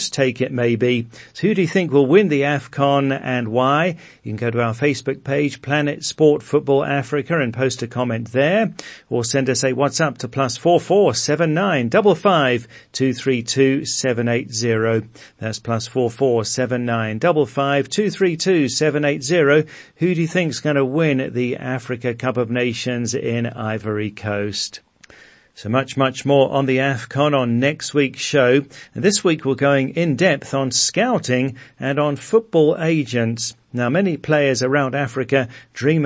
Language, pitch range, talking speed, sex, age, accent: English, 120-150 Hz, 180 wpm, male, 40-59, British